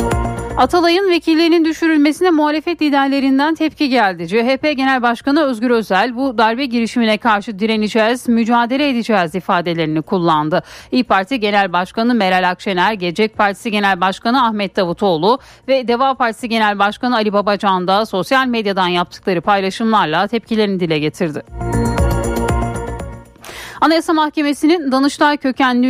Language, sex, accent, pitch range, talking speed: Turkish, female, native, 190-265 Hz, 120 wpm